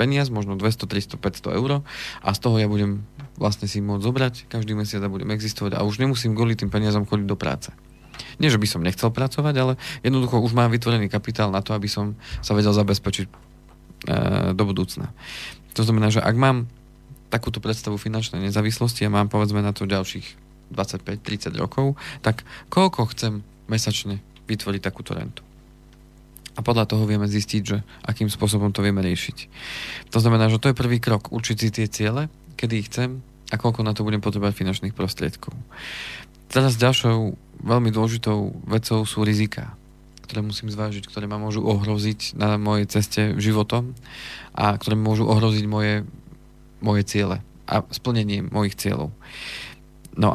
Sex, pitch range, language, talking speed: male, 105-120 Hz, Slovak, 165 wpm